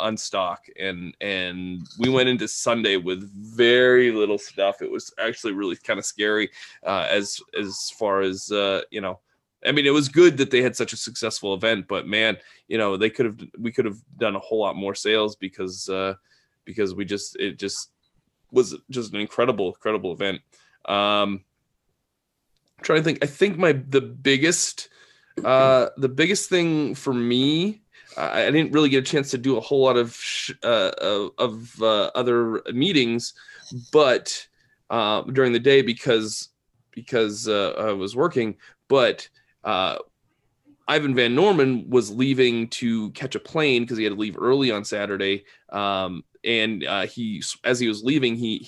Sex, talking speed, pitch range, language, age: male, 175 wpm, 105-135 Hz, English, 20-39